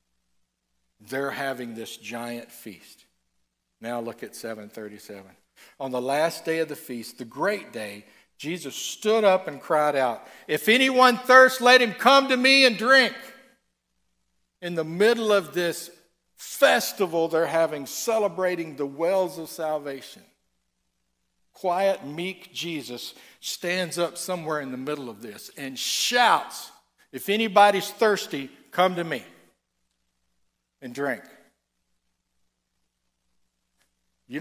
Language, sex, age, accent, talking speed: English, male, 60-79, American, 120 wpm